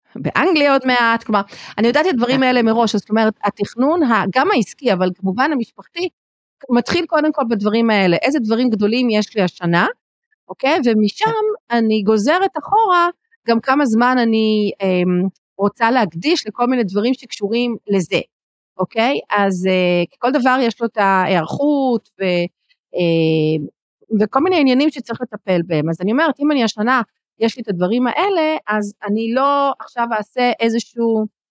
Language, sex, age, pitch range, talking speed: Hebrew, female, 40-59, 205-255 Hz, 150 wpm